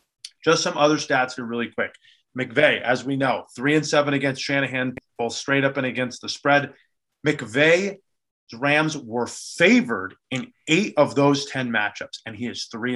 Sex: male